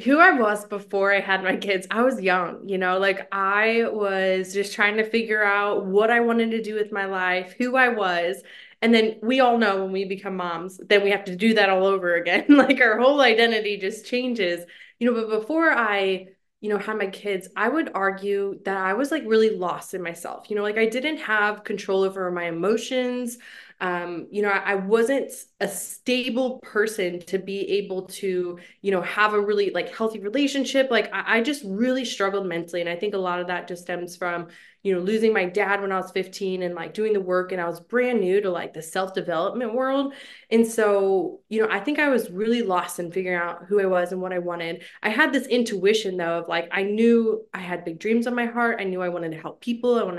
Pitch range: 180-225 Hz